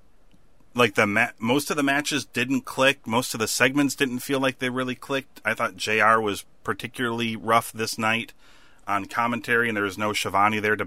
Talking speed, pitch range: 200 wpm, 95-125 Hz